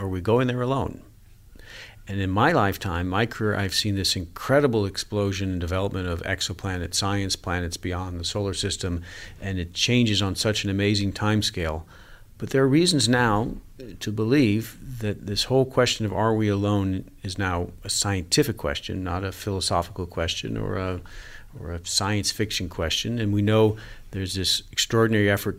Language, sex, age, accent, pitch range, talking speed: English, male, 50-69, American, 90-110 Hz, 170 wpm